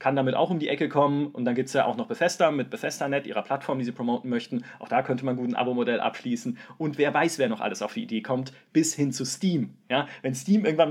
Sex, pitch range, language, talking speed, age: male, 130-200 Hz, German, 270 wpm, 30-49